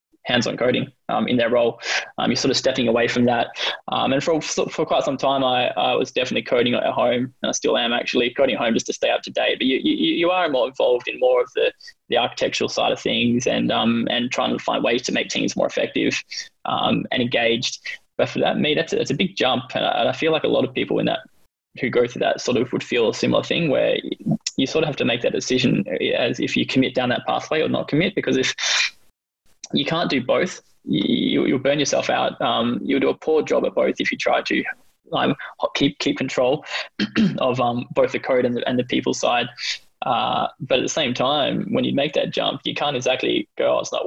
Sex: male